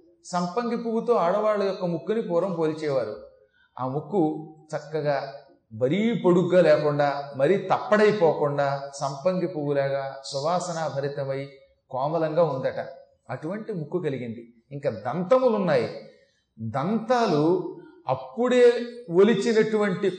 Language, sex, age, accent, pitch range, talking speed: Telugu, male, 30-49, native, 150-215 Hz, 90 wpm